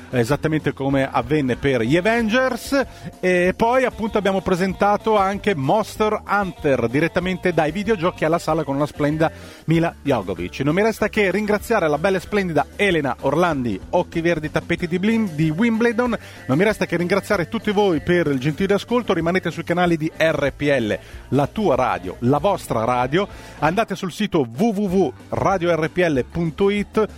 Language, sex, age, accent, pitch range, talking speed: Italian, male, 40-59, native, 145-200 Hz, 150 wpm